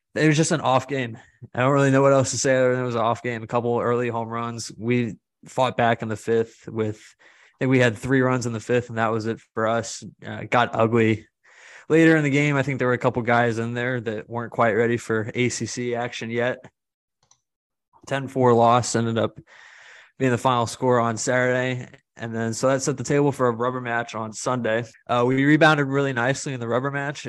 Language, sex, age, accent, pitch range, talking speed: English, male, 20-39, American, 115-130 Hz, 235 wpm